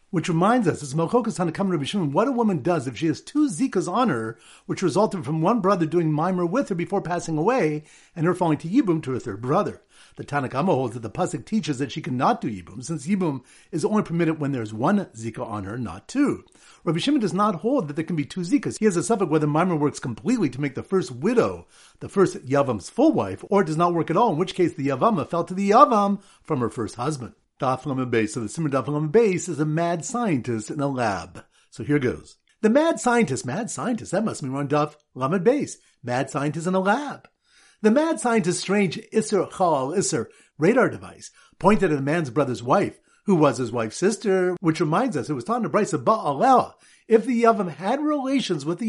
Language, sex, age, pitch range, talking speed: English, male, 50-69, 145-210 Hz, 230 wpm